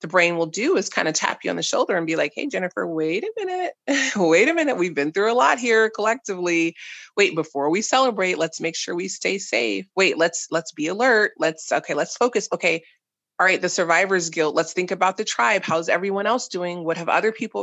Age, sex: 30-49, female